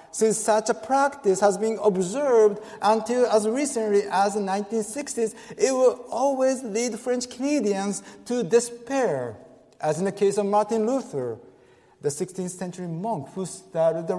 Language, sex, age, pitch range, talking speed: English, male, 50-69, 185-240 Hz, 150 wpm